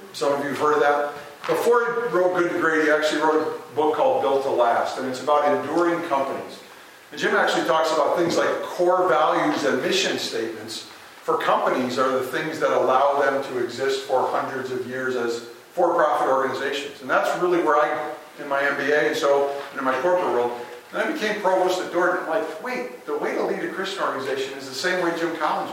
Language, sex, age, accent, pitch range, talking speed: English, male, 50-69, American, 140-180 Hz, 215 wpm